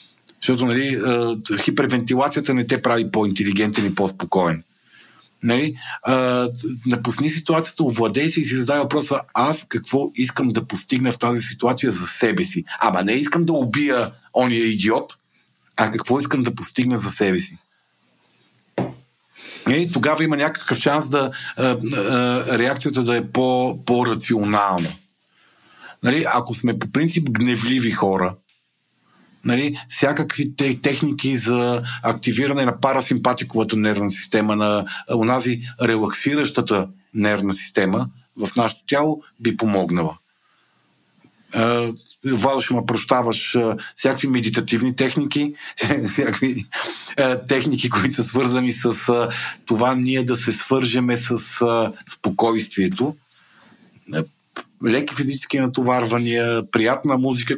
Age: 50-69